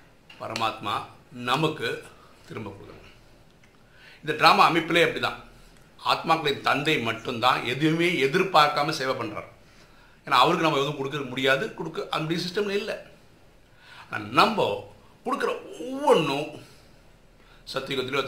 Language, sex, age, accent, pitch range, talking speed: Tamil, male, 50-69, native, 125-190 Hz, 100 wpm